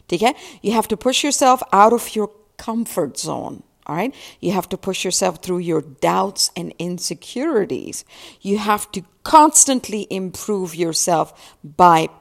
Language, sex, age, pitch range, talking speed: English, female, 50-69, 180-240 Hz, 145 wpm